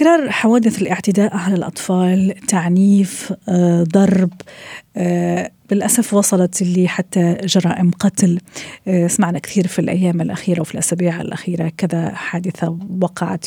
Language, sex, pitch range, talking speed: Arabic, female, 175-200 Hz, 120 wpm